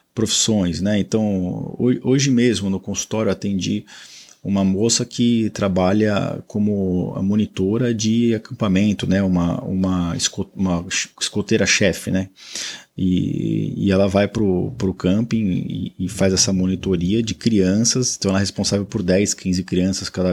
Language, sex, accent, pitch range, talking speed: Portuguese, male, Brazilian, 95-115 Hz, 135 wpm